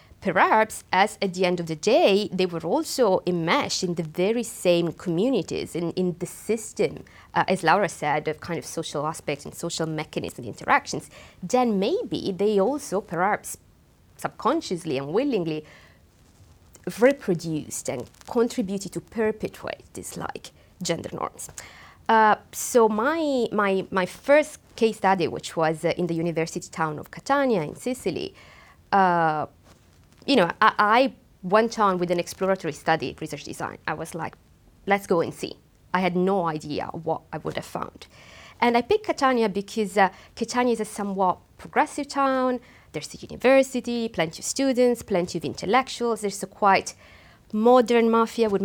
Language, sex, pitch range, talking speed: English, female, 175-225 Hz, 155 wpm